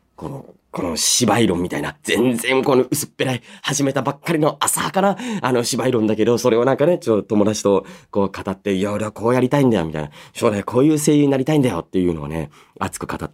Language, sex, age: Japanese, male, 30-49